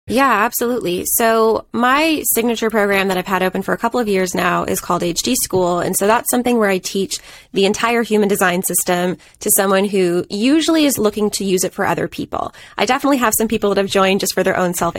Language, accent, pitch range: English, American, 190-225 Hz